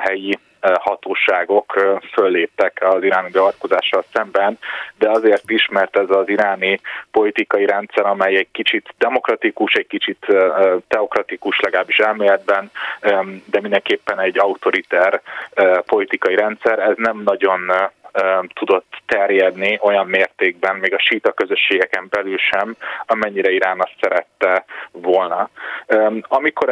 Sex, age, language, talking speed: male, 30-49, Hungarian, 110 wpm